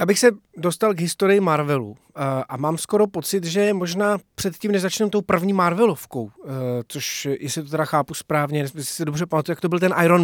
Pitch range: 150-185 Hz